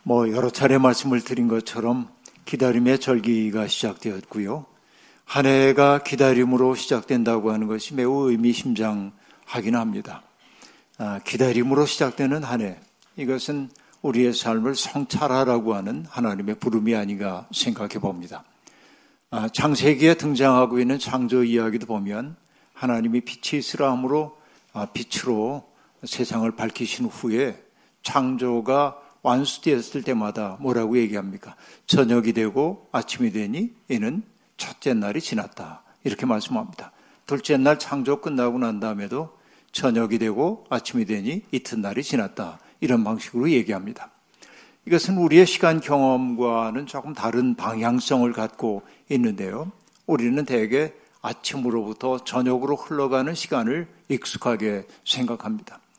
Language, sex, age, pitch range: Korean, male, 50-69, 115-140 Hz